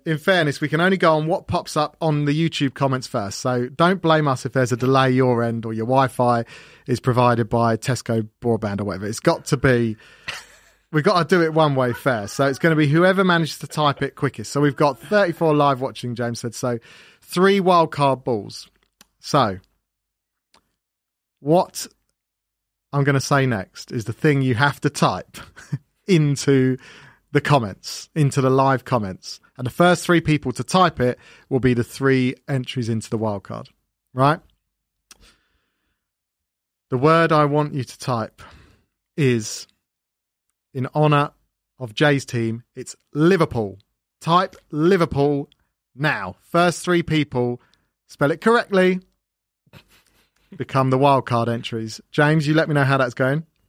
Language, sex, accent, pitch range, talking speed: English, male, British, 120-155 Hz, 160 wpm